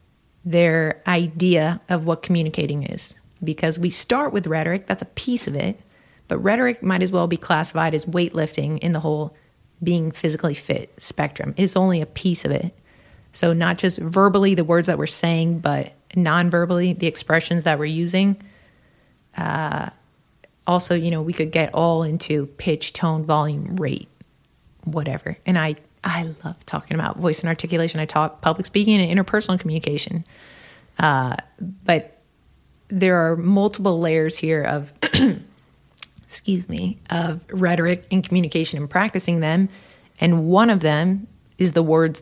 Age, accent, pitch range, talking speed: 30-49, American, 155-180 Hz, 155 wpm